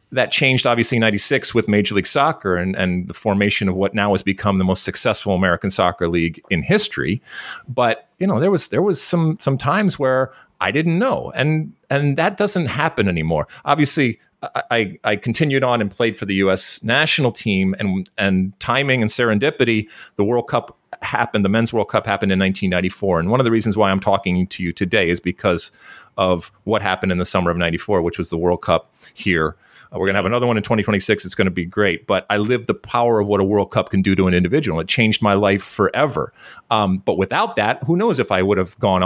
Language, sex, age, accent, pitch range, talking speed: English, male, 40-59, American, 95-125 Hz, 225 wpm